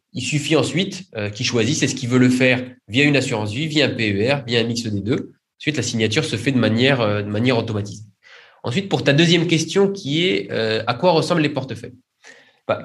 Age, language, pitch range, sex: 20-39, French, 110-150 Hz, male